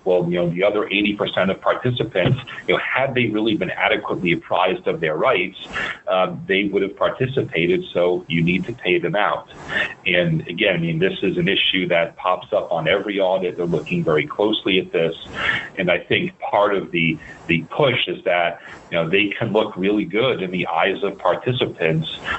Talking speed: 200 wpm